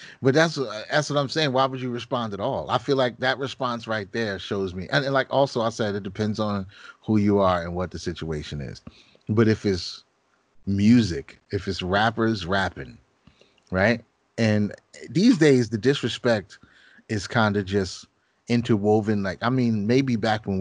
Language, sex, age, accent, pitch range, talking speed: English, male, 30-49, American, 95-120 Hz, 180 wpm